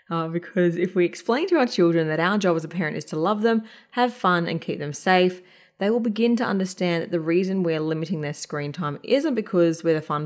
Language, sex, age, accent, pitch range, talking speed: English, female, 20-39, Australian, 160-200 Hz, 245 wpm